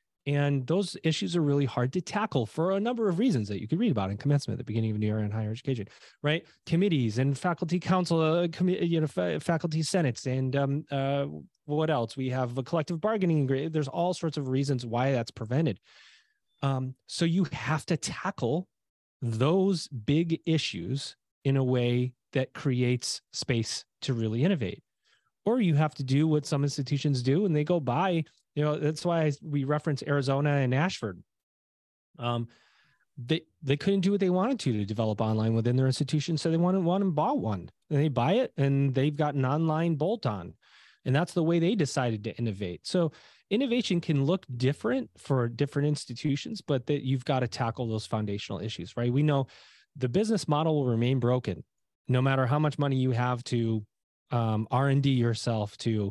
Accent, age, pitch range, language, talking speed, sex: American, 30-49, 120-165 Hz, English, 190 wpm, male